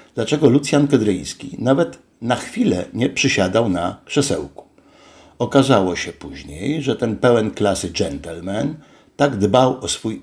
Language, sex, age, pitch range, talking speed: Polish, male, 60-79, 95-125 Hz, 130 wpm